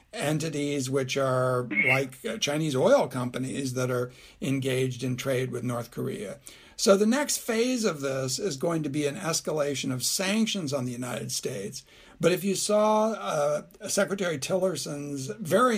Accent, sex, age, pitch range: American, male, 60-79, 130-170 Hz